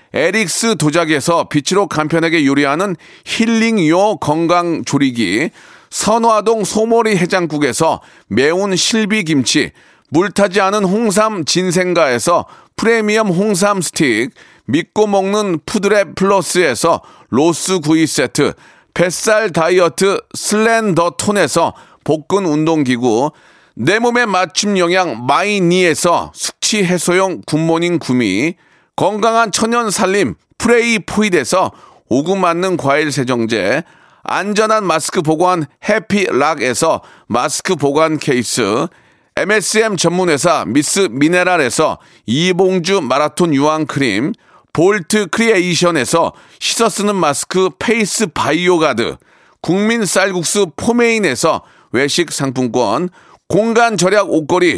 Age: 40-59